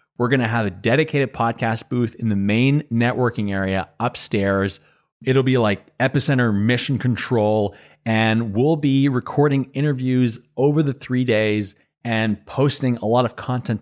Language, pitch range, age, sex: English, 110-135 Hz, 30-49, male